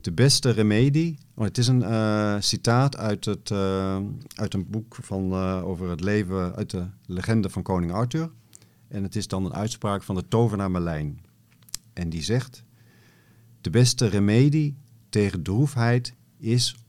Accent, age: Dutch, 50-69